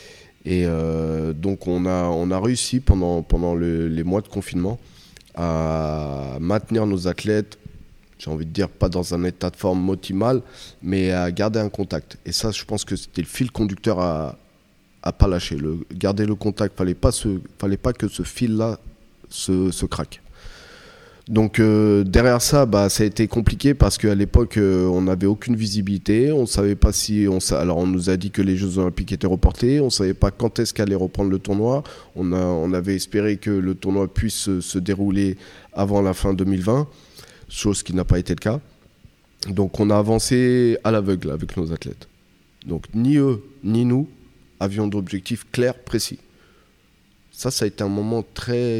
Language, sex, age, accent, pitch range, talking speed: French, male, 20-39, French, 90-110 Hz, 190 wpm